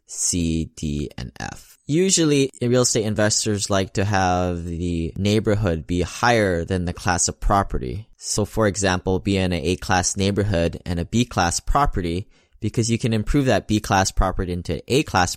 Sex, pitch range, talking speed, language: male, 85-105 Hz, 160 wpm, English